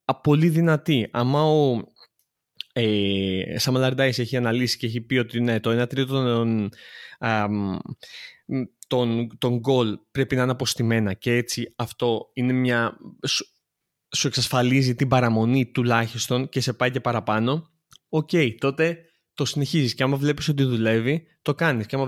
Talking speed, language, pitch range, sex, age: 140 wpm, Greek, 120-155 Hz, male, 20-39